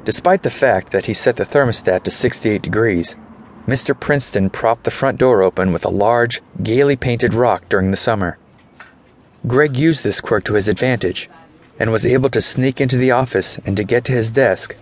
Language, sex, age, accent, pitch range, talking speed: English, male, 30-49, American, 100-130 Hz, 195 wpm